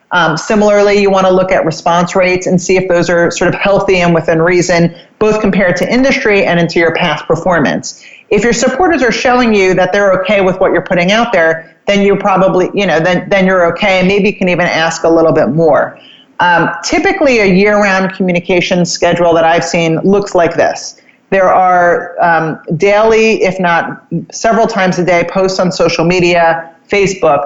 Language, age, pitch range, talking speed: English, 40-59, 170-200 Hz, 195 wpm